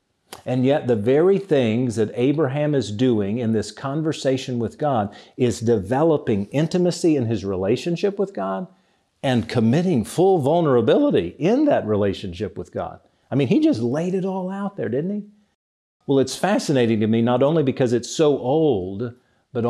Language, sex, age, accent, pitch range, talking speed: English, male, 50-69, American, 115-145 Hz, 165 wpm